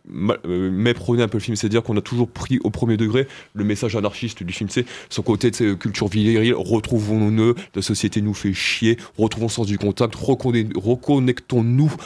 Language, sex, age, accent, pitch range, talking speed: French, male, 20-39, French, 105-125 Hz, 210 wpm